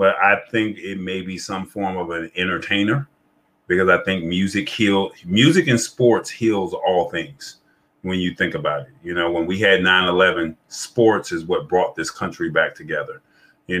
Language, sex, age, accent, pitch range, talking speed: English, male, 30-49, American, 85-100 Hz, 185 wpm